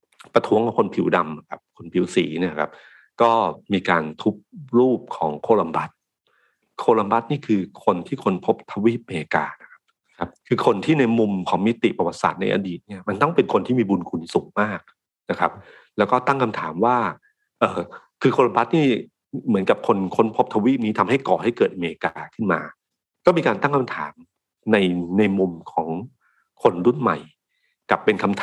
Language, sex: Thai, male